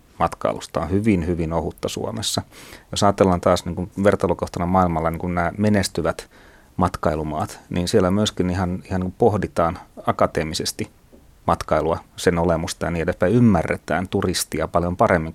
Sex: male